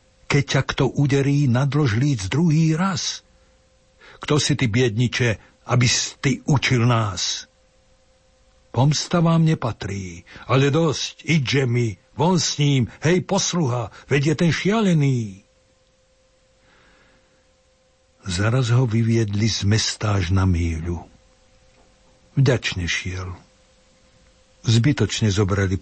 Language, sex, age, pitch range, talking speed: Slovak, male, 60-79, 100-130 Hz, 100 wpm